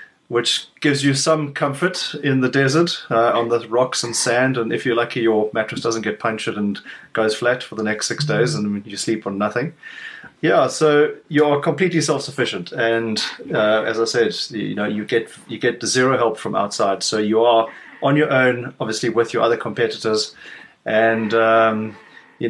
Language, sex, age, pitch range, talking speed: English, male, 30-49, 110-145 Hz, 185 wpm